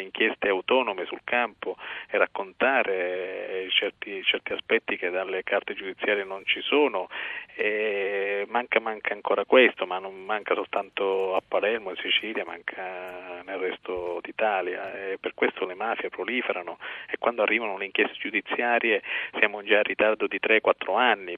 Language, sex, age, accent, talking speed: Italian, male, 40-59, native, 145 wpm